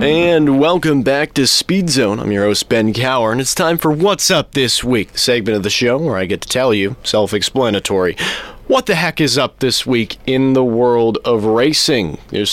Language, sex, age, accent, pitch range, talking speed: English, male, 30-49, American, 115-150 Hz, 210 wpm